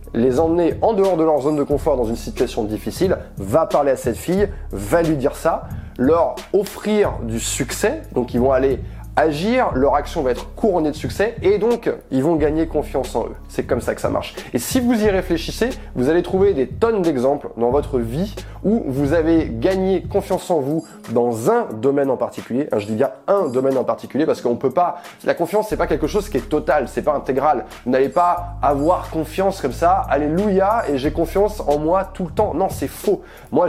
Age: 20-39